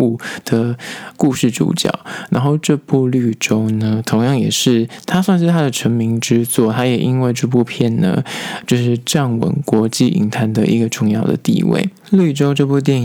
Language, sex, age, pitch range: Chinese, male, 20-39, 115-140 Hz